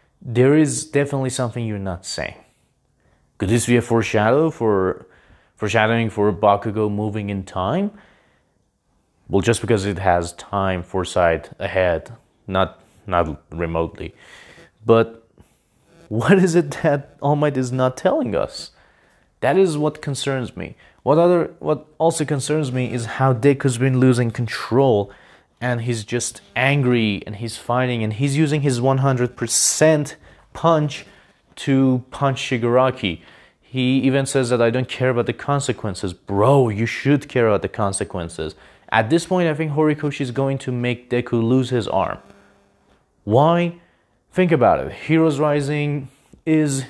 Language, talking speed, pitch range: English, 145 wpm, 110-145 Hz